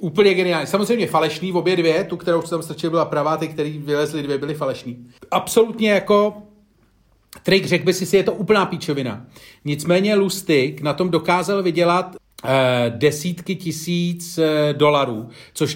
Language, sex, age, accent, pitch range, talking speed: Czech, male, 40-59, native, 135-175 Hz, 160 wpm